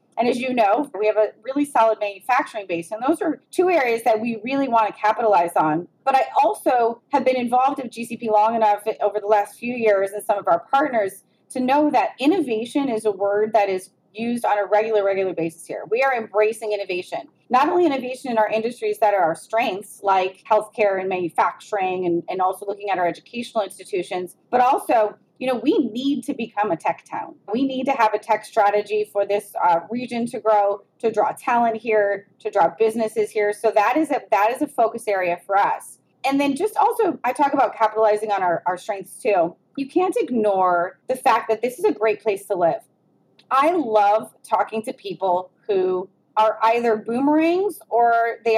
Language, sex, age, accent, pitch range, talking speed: English, female, 30-49, American, 200-250 Hz, 205 wpm